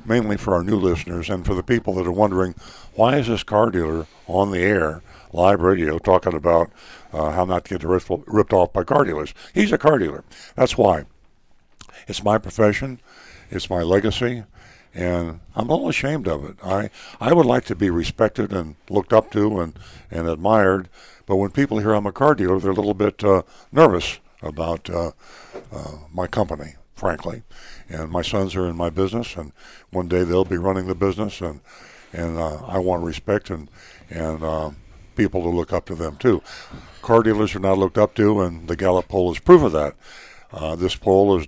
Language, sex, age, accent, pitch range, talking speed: English, male, 60-79, American, 85-105 Hz, 200 wpm